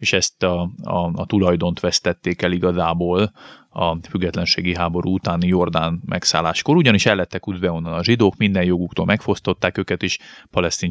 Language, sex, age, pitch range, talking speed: Hungarian, male, 30-49, 90-110 Hz, 150 wpm